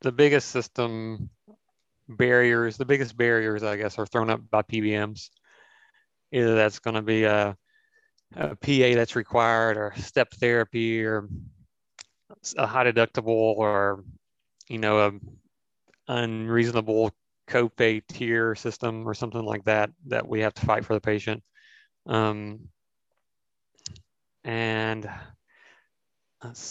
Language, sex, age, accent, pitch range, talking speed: English, male, 30-49, American, 105-120 Hz, 120 wpm